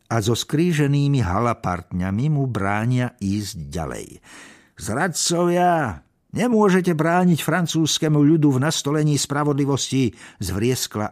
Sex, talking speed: male, 90 wpm